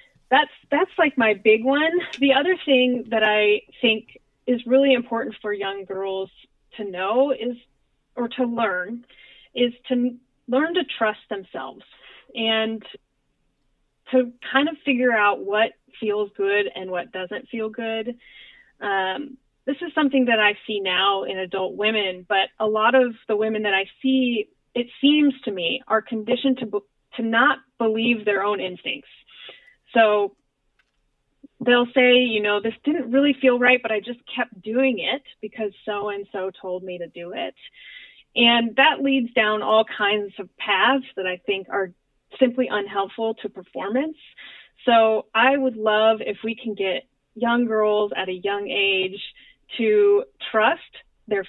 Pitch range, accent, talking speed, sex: 200-250 Hz, American, 155 wpm, female